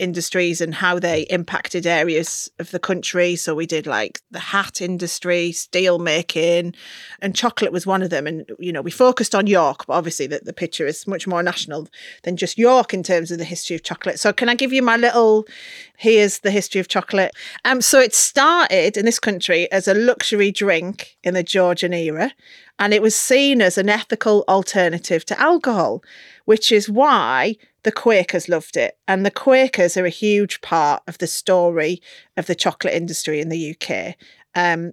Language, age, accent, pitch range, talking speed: English, 30-49, British, 175-225 Hz, 190 wpm